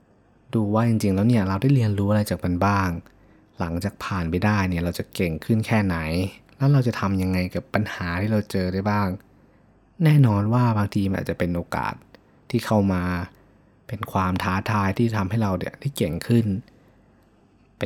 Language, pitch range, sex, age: Thai, 90-110 Hz, male, 20-39